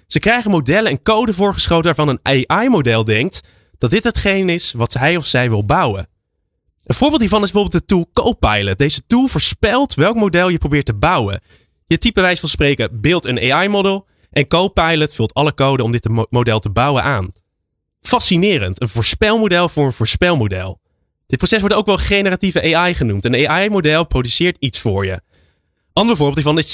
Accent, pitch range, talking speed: Dutch, 110-180 Hz, 180 wpm